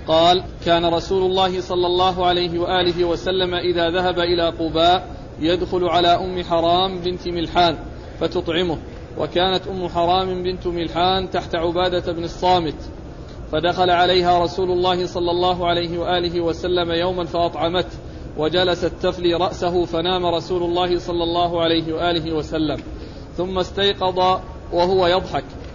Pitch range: 175-190 Hz